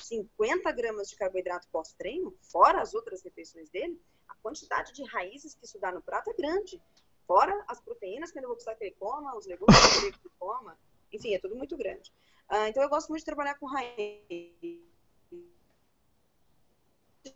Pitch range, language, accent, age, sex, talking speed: 190-275 Hz, Portuguese, Brazilian, 20-39, female, 185 wpm